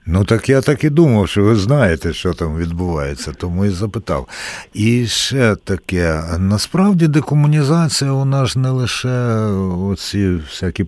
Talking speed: 145 wpm